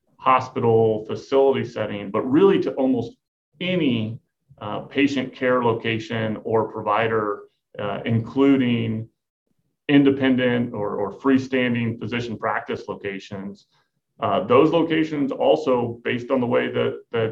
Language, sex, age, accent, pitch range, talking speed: English, male, 30-49, American, 110-135 Hz, 115 wpm